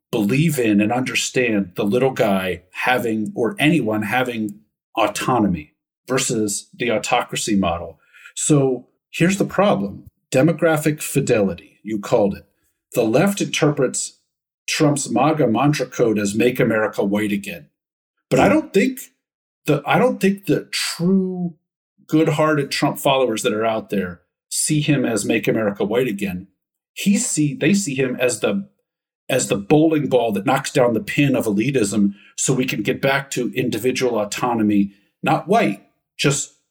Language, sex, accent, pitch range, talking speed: English, male, American, 105-155 Hz, 150 wpm